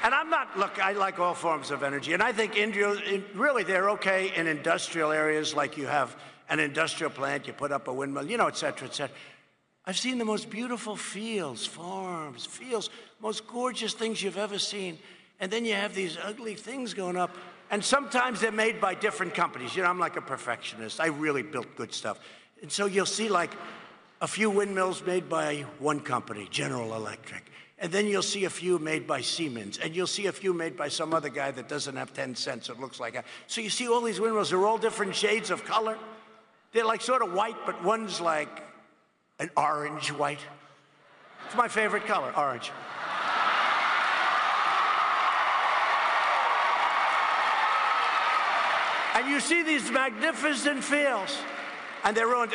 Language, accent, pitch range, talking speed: English, American, 155-225 Hz, 175 wpm